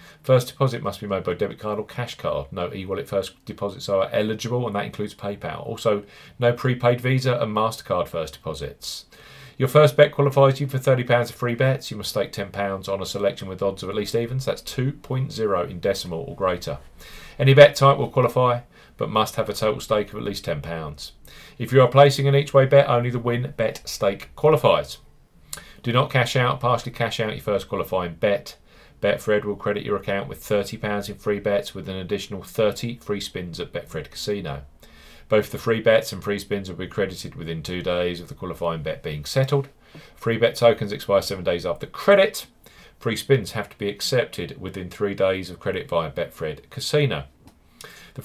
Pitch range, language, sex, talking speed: 100-130 Hz, English, male, 195 wpm